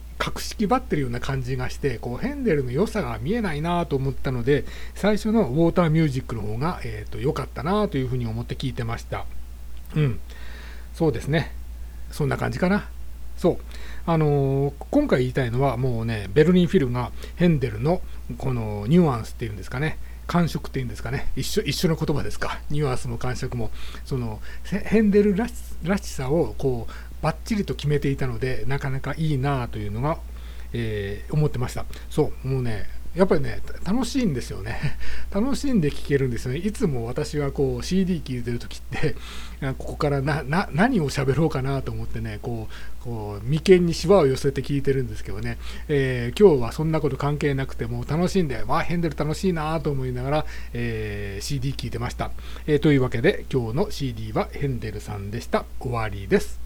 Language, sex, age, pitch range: English, male, 40-59, 115-160 Hz